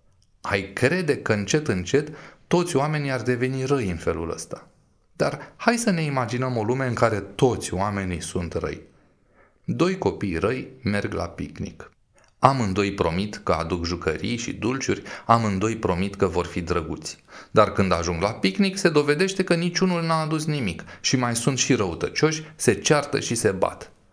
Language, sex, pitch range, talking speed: Romanian, male, 95-165 Hz, 165 wpm